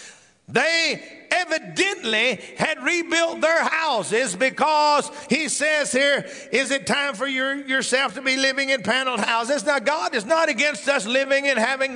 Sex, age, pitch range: male, 50-69, 270-315 Hz